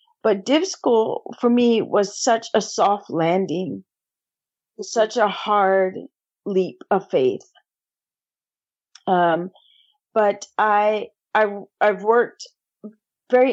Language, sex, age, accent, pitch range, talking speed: English, female, 40-59, American, 195-235 Hz, 105 wpm